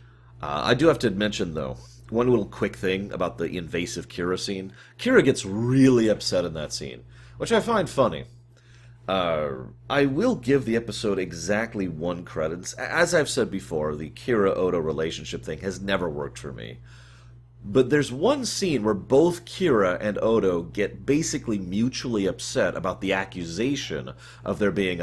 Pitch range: 95-120 Hz